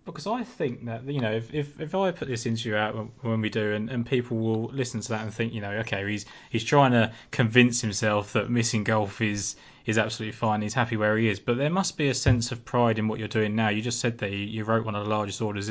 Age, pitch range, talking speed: 20-39, 110-120 Hz, 270 wpm